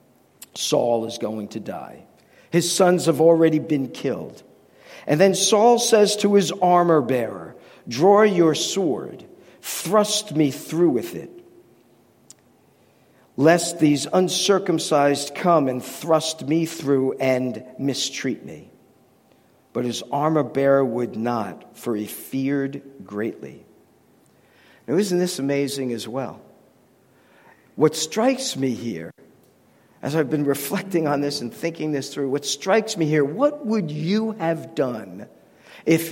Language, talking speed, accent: English, 130 wpm, American